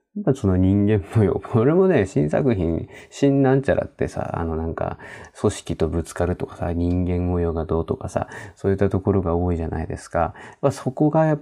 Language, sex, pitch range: Japanese, male, 85-110 Hz